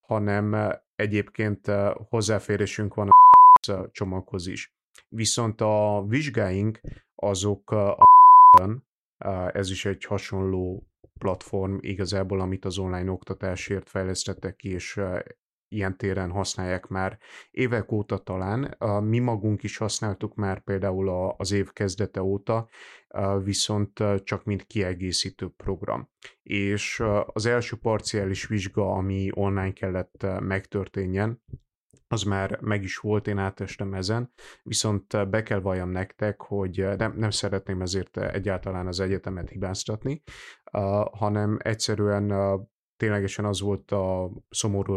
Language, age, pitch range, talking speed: Hungarian, 30-49, 95-105 Hz, 115 wpm